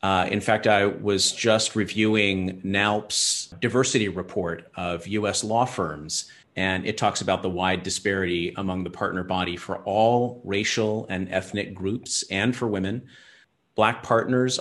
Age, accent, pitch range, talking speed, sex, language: 40-59, American, 95-120 Hz, 150 wpm, male, English